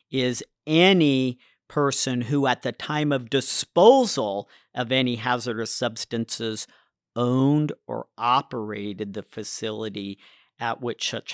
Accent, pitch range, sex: American, 115-135 Hz, male